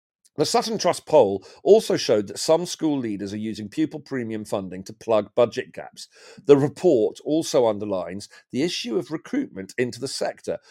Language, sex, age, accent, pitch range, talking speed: English, male, 40-59, British, 105-150 Hz, 170 wpm